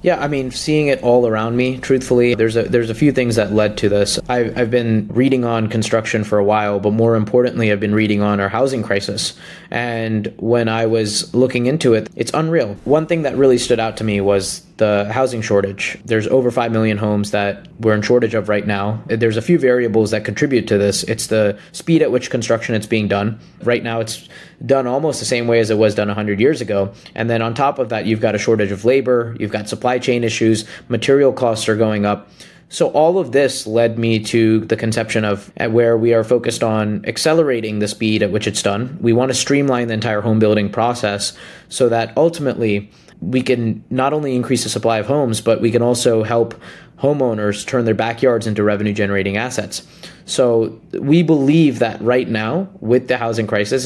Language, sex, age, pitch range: English, male, 20-39, 110-130 Hz